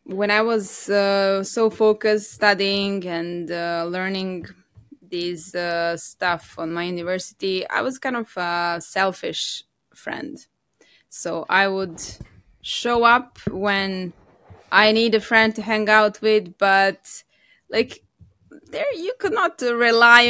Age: 20-39